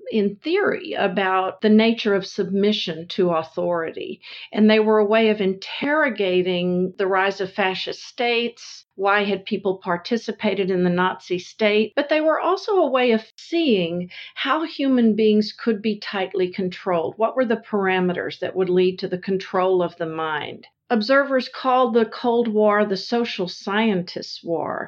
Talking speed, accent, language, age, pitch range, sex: 160 wpm, American, English, 50-69, 185-220 Hz, female